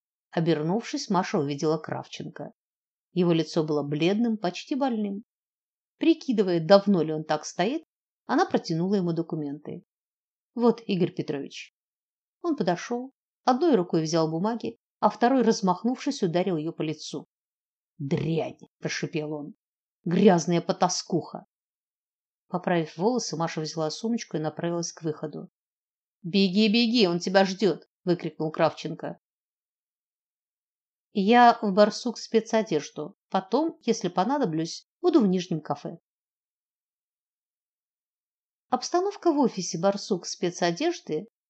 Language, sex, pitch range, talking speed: Russian, female, 165-235 Hz, 105 wpm